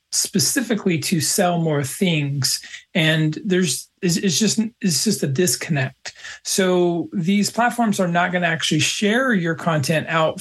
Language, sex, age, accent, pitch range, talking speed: English, male, 40-59, American, 160-195 Hz, 150 wpm